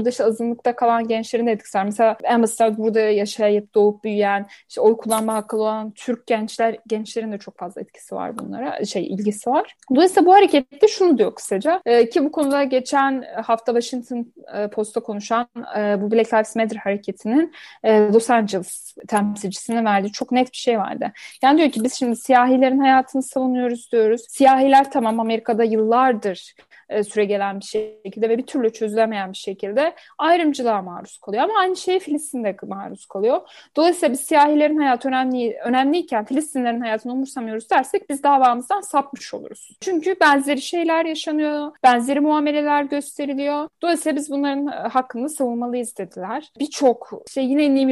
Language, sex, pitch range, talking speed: Turkish, female, 220-280 Hz, 155 wpm